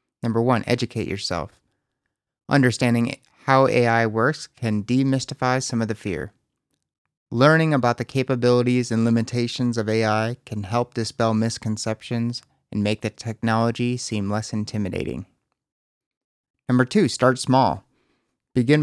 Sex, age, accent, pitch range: male, 30-49, American, 110-130 Hz